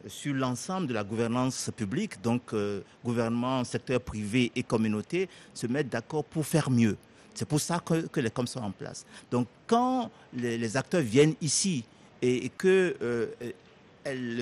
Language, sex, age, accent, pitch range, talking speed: French, male, 50-69, French, 125-175 Hz, 160 wpm